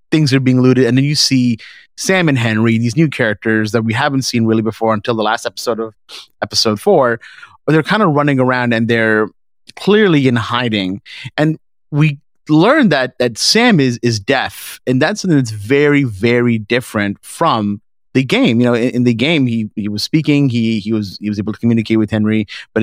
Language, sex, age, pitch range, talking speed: English, male, 30-49, 110-135 Hz, 205 wpm